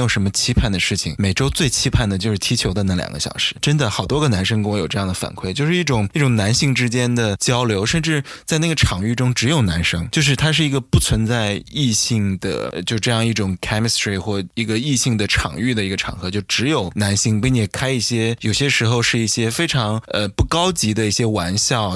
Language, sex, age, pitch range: Chinese, male, 20-39, 100-120 Hz